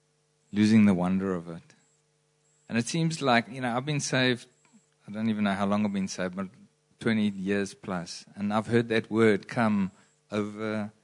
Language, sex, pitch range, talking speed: English, male, 100-150 Hz, 185 wpm